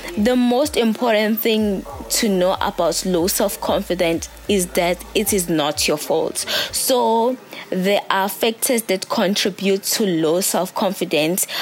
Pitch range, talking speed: 180-230 Hz, 130 wpm